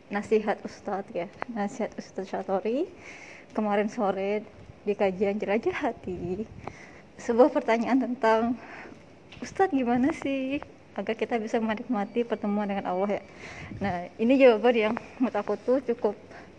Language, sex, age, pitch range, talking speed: Indonesian, female, 20-39, 210-245 Hz, 120 wpm